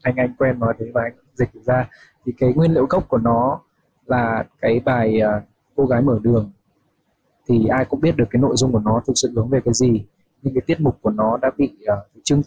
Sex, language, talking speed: male, Vietnamese, 235 wpm